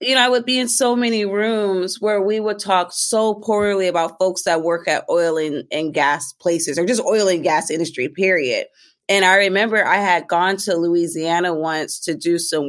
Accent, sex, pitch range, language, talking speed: American, female, 180-220 Hz, English, 210 wpm